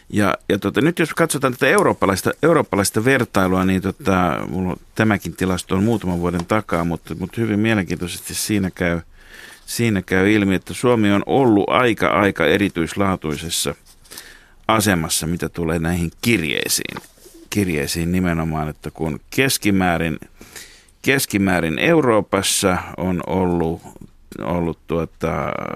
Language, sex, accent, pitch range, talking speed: Finnish, male, native, 85-110 Hz, 105 wpm